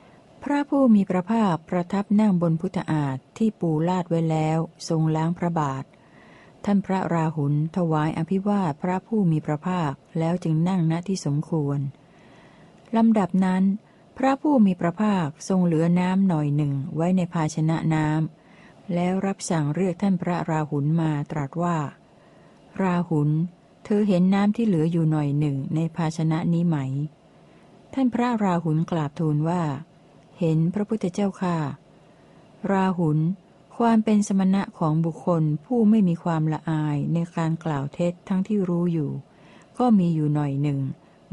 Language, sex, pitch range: Thai, female, 155-190 Hz